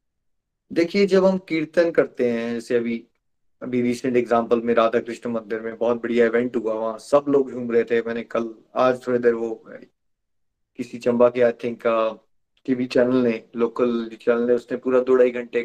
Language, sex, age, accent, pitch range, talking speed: Hindi, male, 30-49, native, 115-145 Hz, 180 wpm